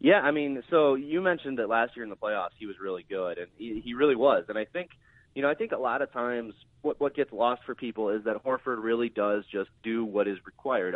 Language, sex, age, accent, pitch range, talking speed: English, male, 30-49, American, 105-135 Hz, 265 wpm